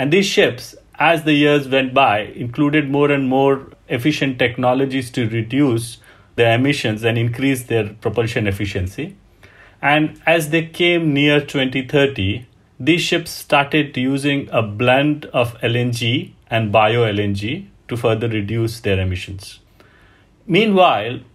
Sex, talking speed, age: male, 125 wpm, 30-49